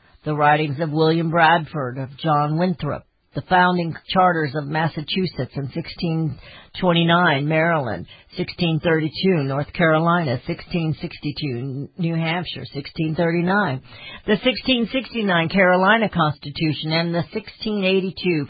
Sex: female